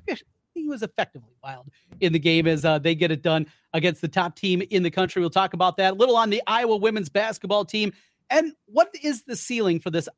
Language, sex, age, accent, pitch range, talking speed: English, male, 30-49, American, 165-225 Hz, 230 wpm